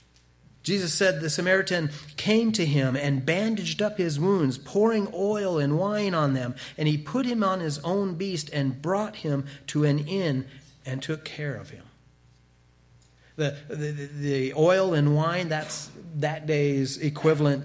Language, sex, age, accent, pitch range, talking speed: English, male, 40-59, American, 140-185 Hz, 160 wpm